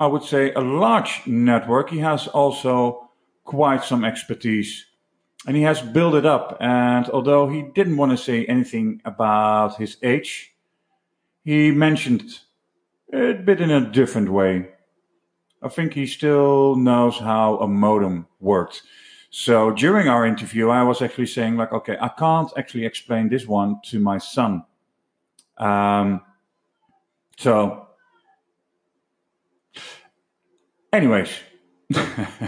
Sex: male